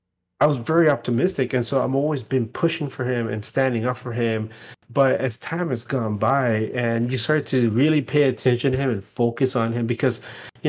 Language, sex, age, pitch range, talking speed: English, male, 30-49, 120-165 Hz, 215 wpm